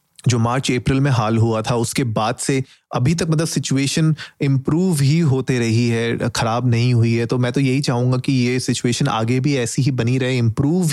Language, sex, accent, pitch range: Hindi, male, native, 115-135 Hz